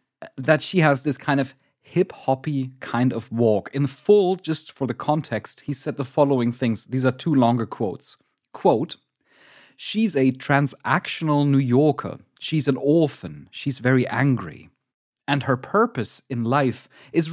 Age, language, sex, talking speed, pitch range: 30-49, English, male, 150 wpm, 125-160 Hz